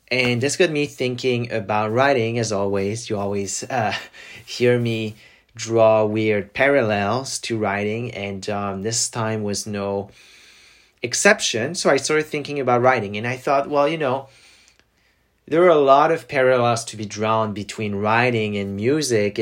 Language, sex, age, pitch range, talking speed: English, male, 30-49, 105-125 Hz, 160 wpm